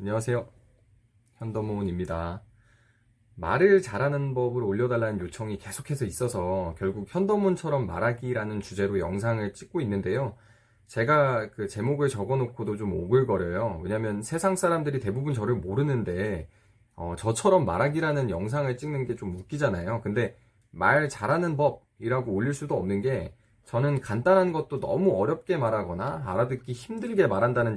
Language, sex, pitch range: Korean, male, 105-140 Hz